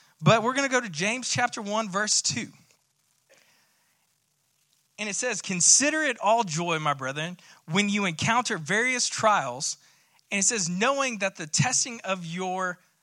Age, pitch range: 20-39, 160-220 Hz